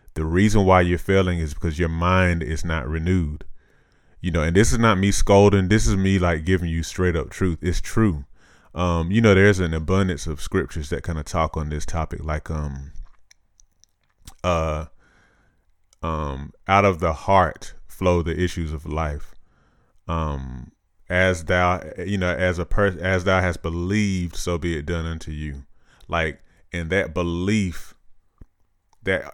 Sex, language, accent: male, English, American